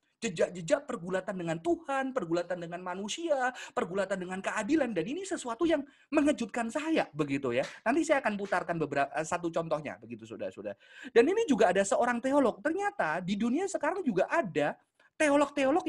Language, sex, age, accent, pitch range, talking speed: Indonesian, male, 30-49, native, 205-320 Hz, 155 wpm